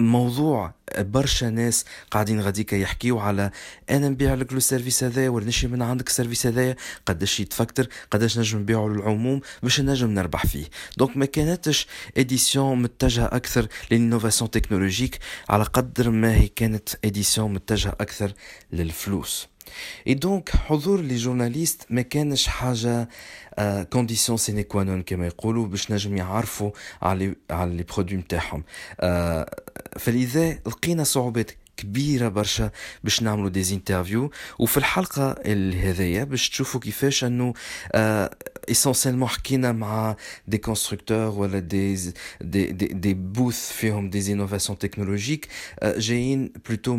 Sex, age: male, 40-59